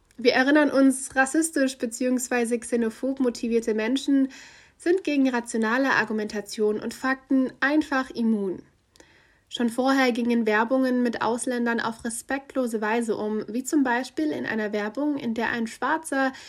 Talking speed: 130 wpm